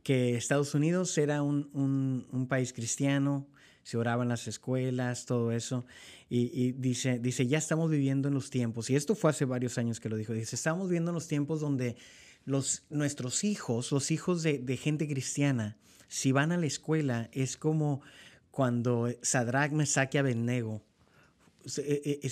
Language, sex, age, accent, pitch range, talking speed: Spanish, male, 30-49, Mexican, 125-150 Hz, 170 wpm